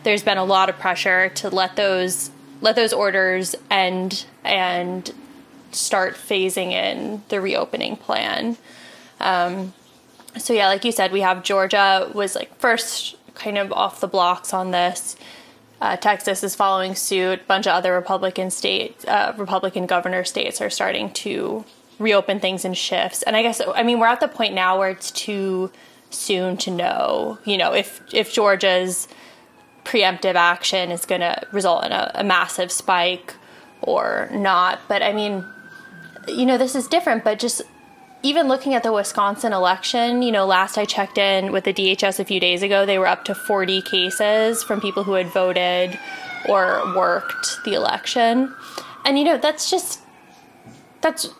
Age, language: 20-39, English